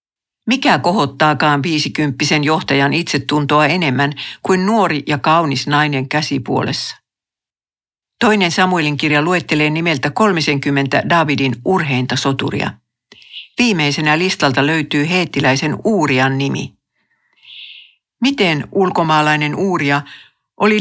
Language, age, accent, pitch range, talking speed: Finnish, 60-79, native, 145-185 Hz, 85 wpm